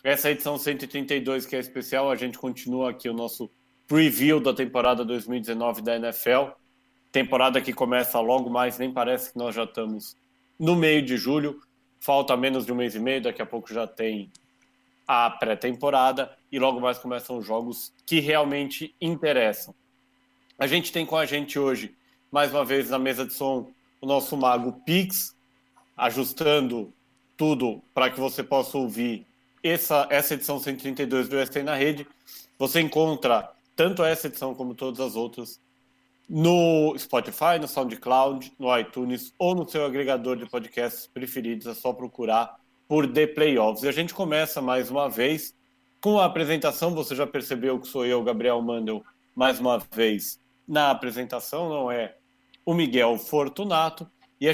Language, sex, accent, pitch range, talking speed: English, male, Brazilian, 125-150 Hz, 165 wpm